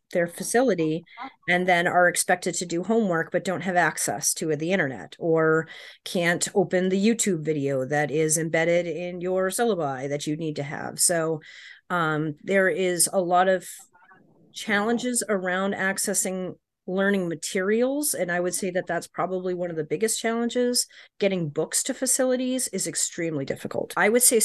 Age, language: 30-49, English